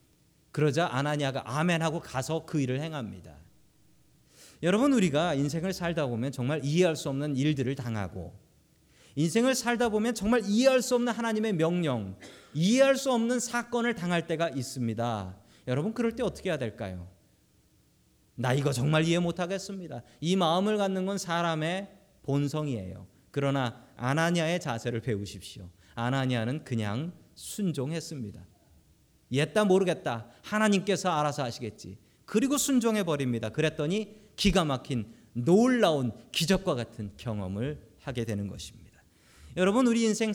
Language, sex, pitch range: Korean, male, 120-195 Hz